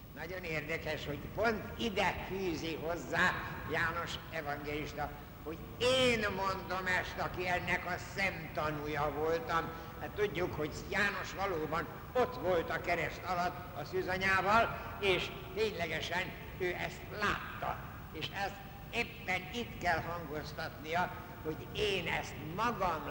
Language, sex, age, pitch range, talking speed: Hungarian, male, 60-79, 145-180 Hz, 120 wpm